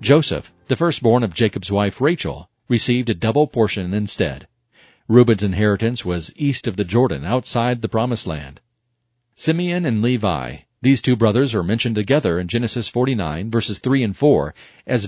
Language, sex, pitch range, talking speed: English, male, 105-125 Hz, 160 wpm